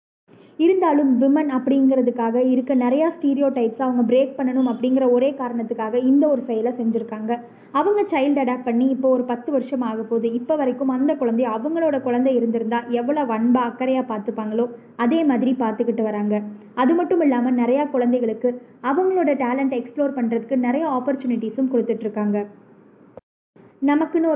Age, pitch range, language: 20-39, 235-275 Hz, Tamil